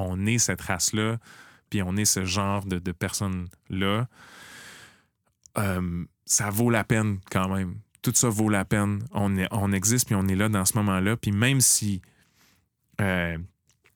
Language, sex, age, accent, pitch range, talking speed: French, male, 30-49, Canadian, 95-110 Hz, 170 wpm